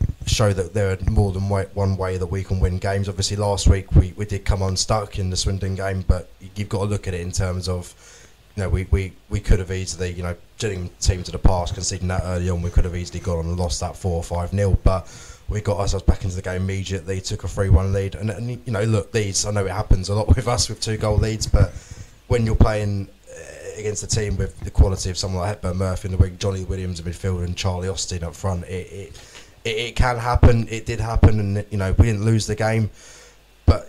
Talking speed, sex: 250 wpm, male